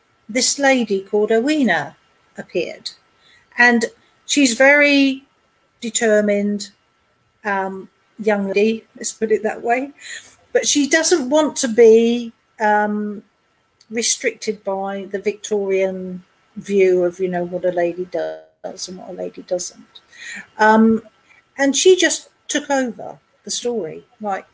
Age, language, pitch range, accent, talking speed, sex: 50-69, English, 210-280 Hz, British, 120 wpm, female